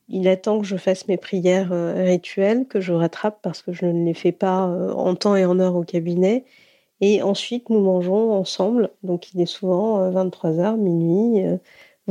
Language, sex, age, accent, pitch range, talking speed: French, female, 40-59, French, 180-205 Hz, 200 wpm